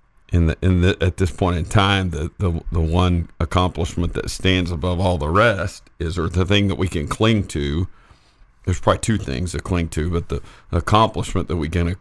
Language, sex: English, male